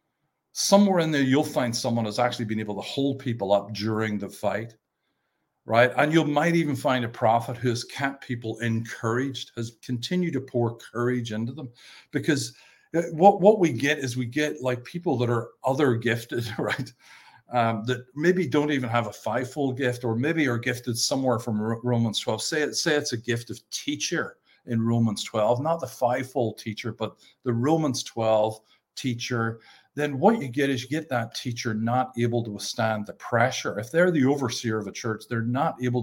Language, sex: English, male